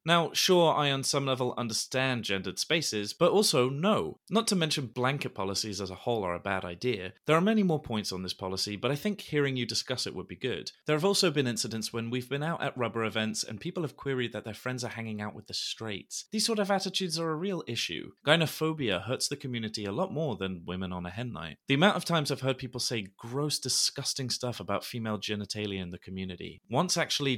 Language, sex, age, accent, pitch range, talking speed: English, male, 30-49, British, 110-155 Hz, 235 wpm